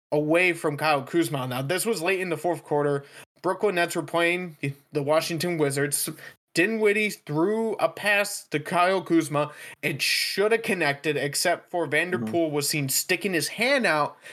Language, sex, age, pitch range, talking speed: English, male, 20-39, 150-205 Hz, 165 wpm